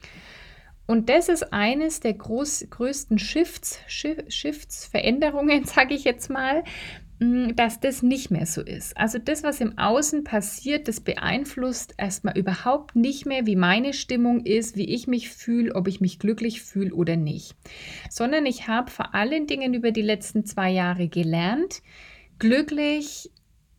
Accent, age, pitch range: German, 30-49, 185-245 Hz